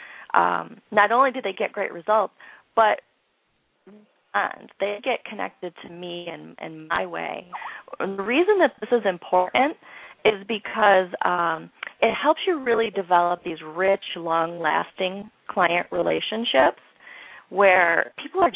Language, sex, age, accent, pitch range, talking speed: English, female, 30-49, American, 170-220 Hz, 130 wpm